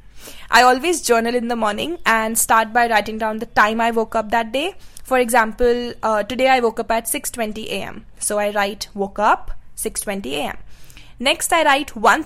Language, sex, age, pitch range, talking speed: English, female, 20-39, 220-260 Hz, 190 wpm